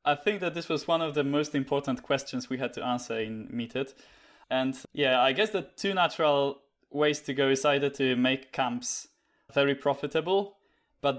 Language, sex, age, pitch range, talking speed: Slovak, male, 20-39, 130-155 Hz, 190 wpm